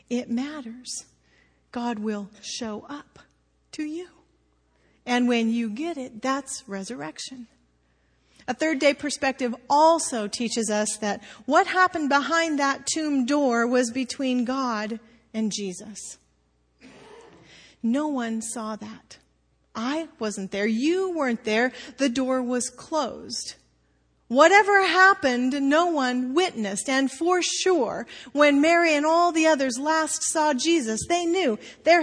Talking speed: 125 wpm